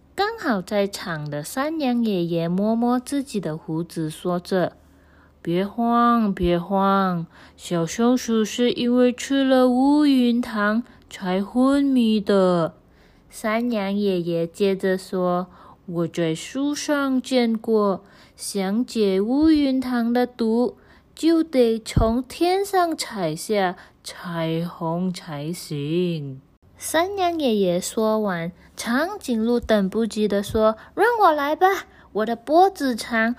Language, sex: Chinese, female